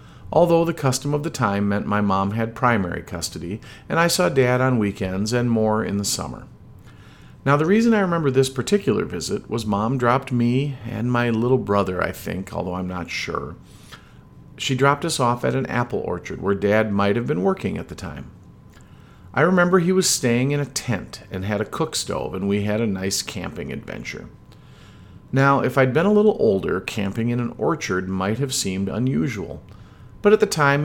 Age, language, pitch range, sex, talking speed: 50-69, English, 100-135 Hz, male, 195 wpm